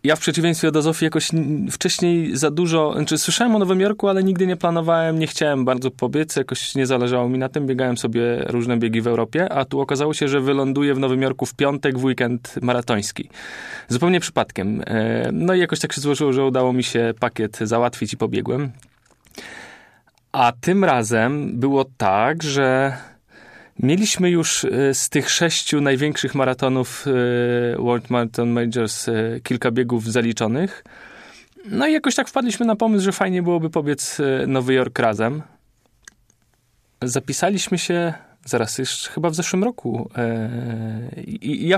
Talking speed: 155 wpm